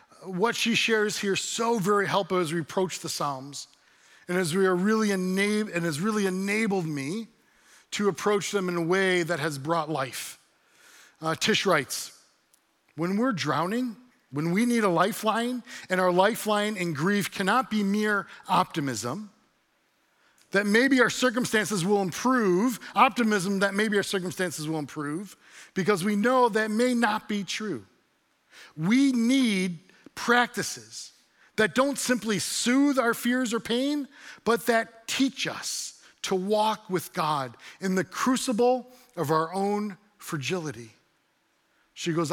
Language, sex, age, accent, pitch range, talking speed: English, male, 40-59, American, 180-240 Hz, 145 wpm